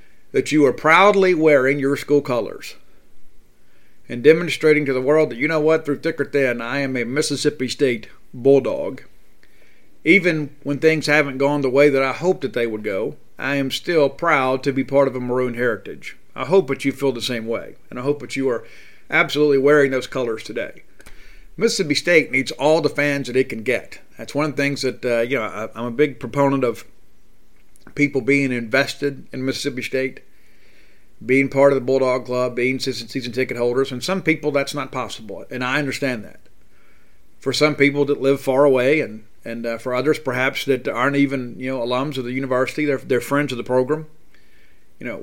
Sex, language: male, English